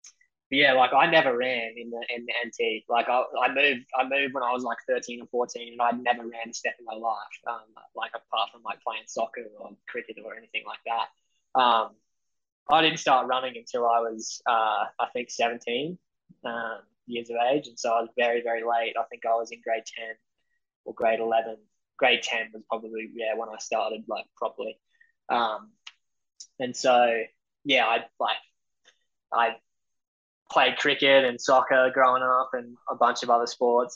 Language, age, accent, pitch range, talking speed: English, 10-29, Australian, 115-125 Hz, 190 wpm